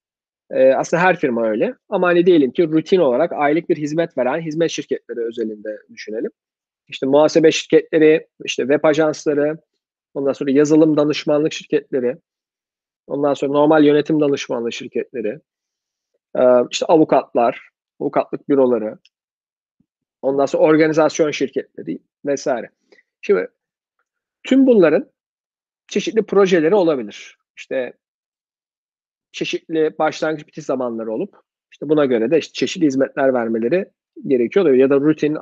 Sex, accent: male, native